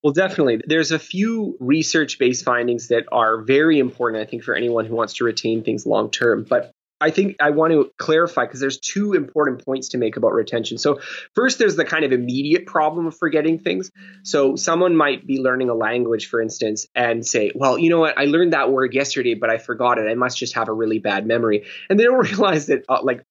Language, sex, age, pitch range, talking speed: English, male, 20-39, 120-155 Hz, 225 wpm